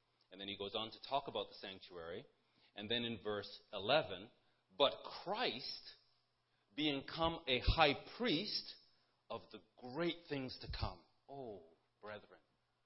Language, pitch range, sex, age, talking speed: English, 115-160 Hz, male, 40-59, 140 wpm